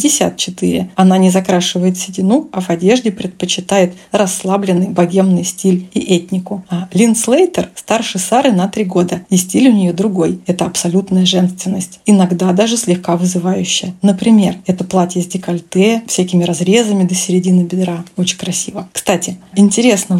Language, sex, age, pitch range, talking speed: Russian, female, 20-39, 180-205 Hz, 145 wpm